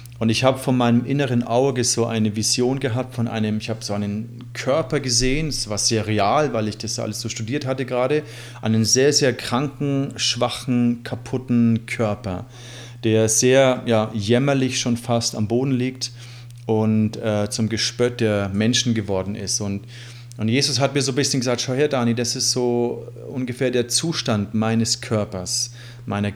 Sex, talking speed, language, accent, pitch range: male, 175 wpm, German, German, 110-125 Hz